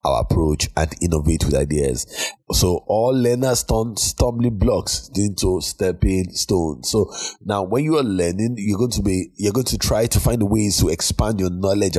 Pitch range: 90-120 Hz